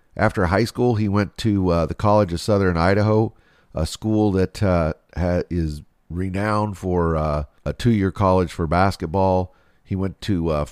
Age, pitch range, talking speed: 50-69, 90-110 Hz, 170 wpm